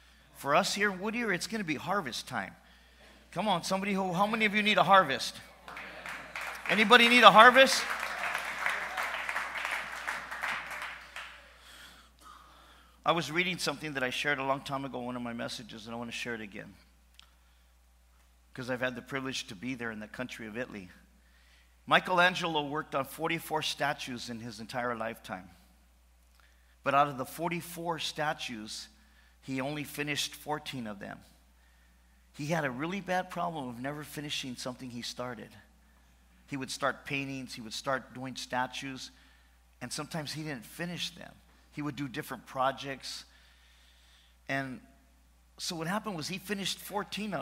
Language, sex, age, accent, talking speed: English, male, 50-69, American, 155 wpm